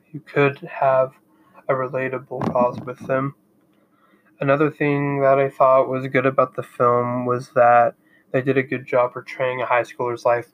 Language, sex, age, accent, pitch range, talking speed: English, male, 20-39, American, 125-140 Hz, 165 wpm